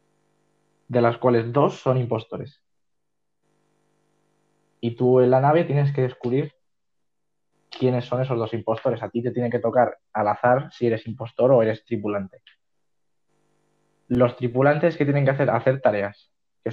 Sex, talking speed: male, 150 wpm